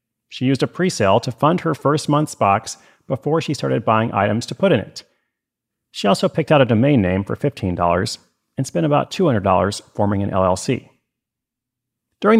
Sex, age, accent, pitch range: male, 40-59, American, 110-140 Hz